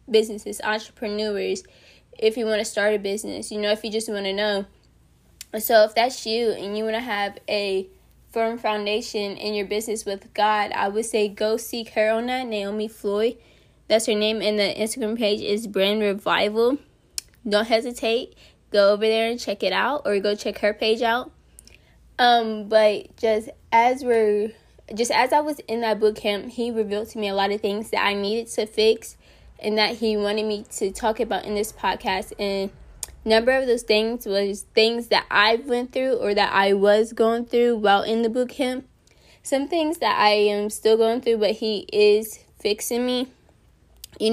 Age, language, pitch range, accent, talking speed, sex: 10-29, English, 205-230 Hz, American, 190 wpm, female